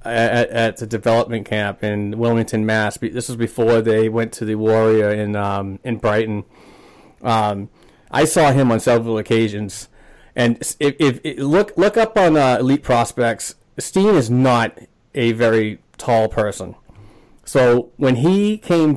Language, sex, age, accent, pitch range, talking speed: English, male, 30-49, American, 110-130 Hz, 155 wpm